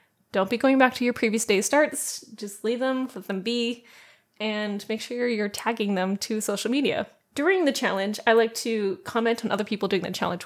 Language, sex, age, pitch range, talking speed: English, female, 10-29, 210-250 Hz, 210 wpm